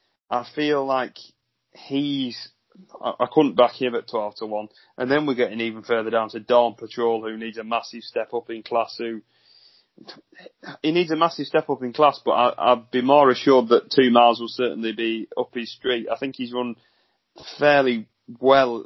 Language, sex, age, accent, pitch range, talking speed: English, male, 30-49, British, 110-125 Hz, 190 wpm